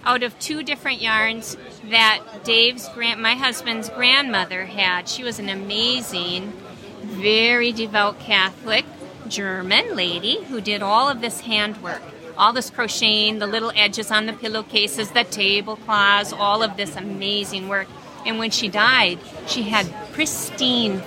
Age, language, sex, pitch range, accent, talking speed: 40-59, English, female, 205-265 Hz, American, 140 wpm